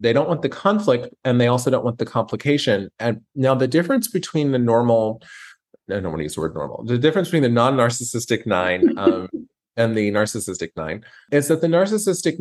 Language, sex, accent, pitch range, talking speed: English, male, American, 105-145 Hz, 205 wpm